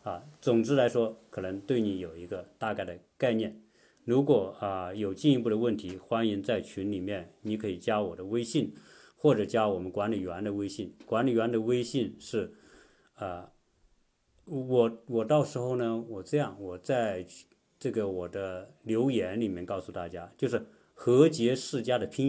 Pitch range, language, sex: 95-125 Hz, Chinese, male